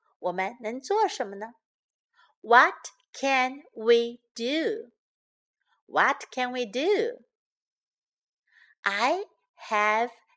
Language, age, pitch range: Chinese, 50-69, 235-370 Hz